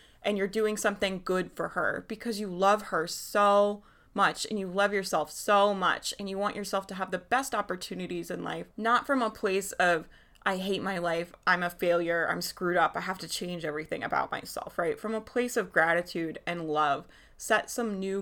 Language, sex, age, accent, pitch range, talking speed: English, female, 20-39, American, 185-230 Hz, 210 wpm